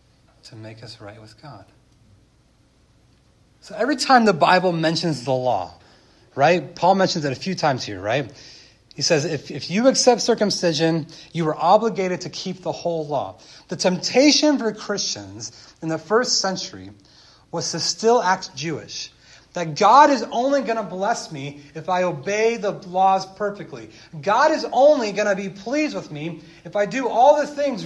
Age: 30-49